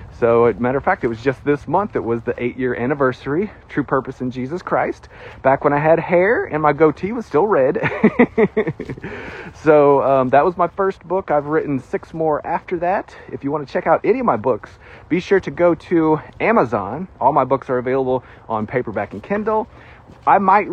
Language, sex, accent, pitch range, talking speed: English, male, American, 125-180 Hz, 210 wpm